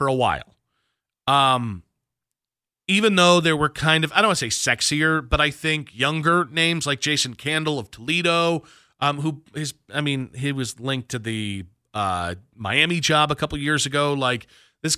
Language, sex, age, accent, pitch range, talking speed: English, male, 40-59, American, 130-160 Hz, 180 wpm